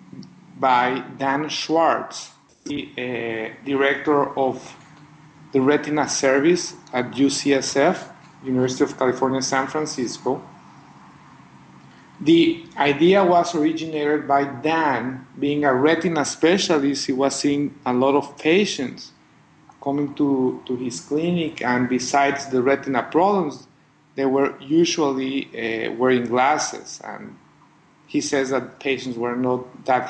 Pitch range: 125-150 Hz